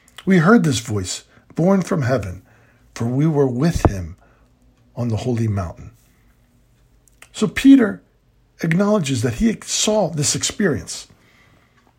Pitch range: 115-180 Hz